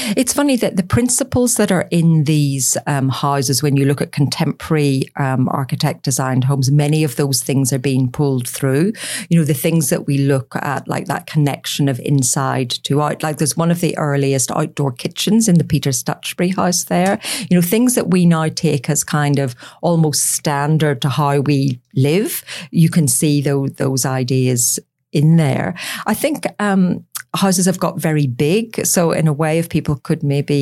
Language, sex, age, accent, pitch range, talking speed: English, female, 50-69, British, 140-175 Hz, 185 wpm